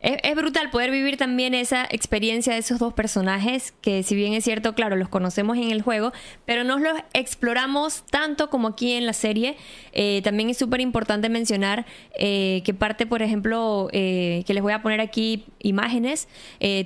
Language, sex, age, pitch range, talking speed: Spanish, female, 20-39, 200-245 Hz, 180 wpm